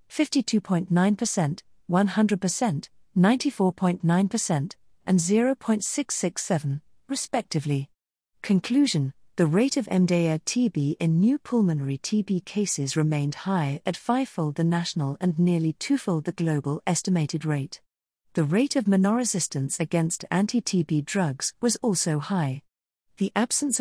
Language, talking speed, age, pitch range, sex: English, 105 wpm, 40-59, 155-210 Hz, female